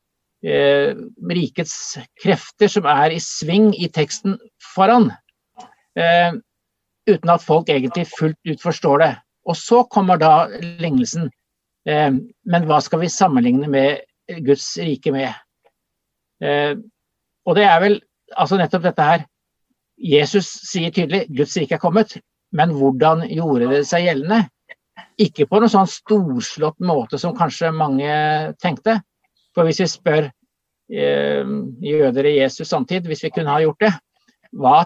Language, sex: English, male